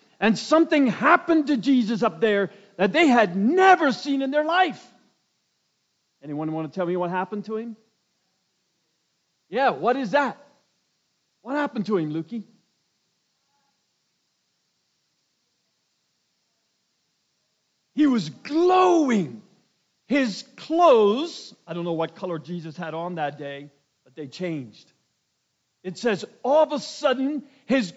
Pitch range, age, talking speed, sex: 170-265 Hz, 50-69, 125 wpm, male